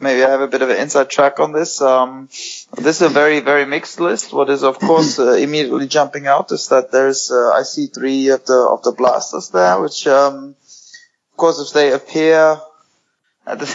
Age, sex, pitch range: 20-39, male, 135-155 Hz